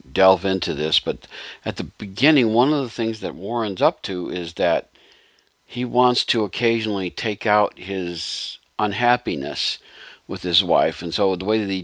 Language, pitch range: English, 90-120 Hz